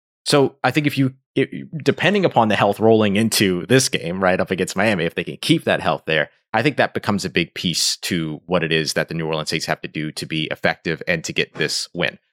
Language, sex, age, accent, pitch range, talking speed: English, male, 30-49, American, 90-125 Hz, 250 wpm